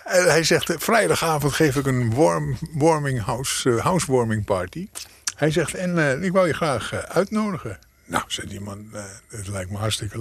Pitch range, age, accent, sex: 105-135 Hz, 50-69, Dutch, male